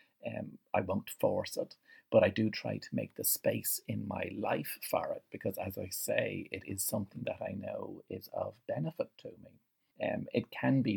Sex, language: male, English